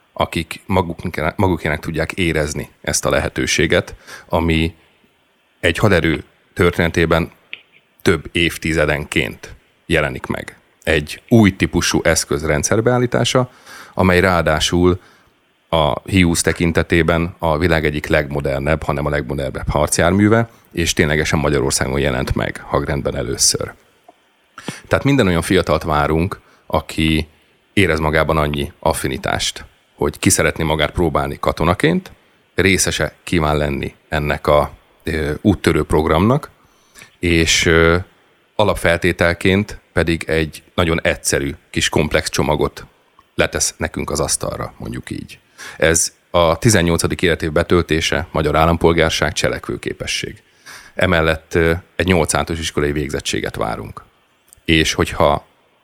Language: Hungarian